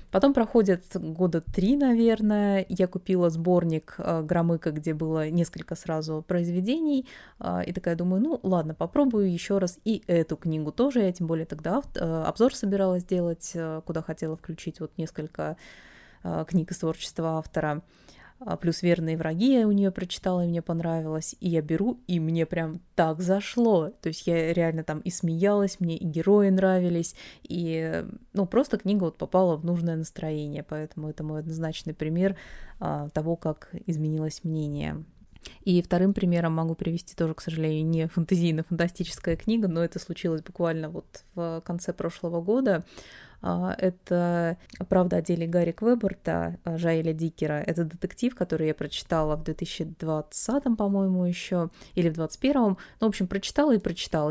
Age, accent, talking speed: 20-39, native, 155 wpm